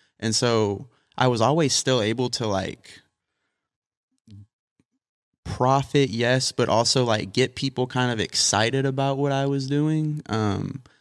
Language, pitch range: English, 105-125 Hz